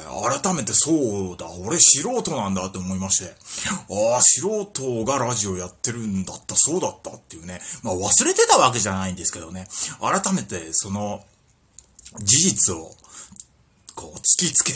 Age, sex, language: 30-49, male, Japanese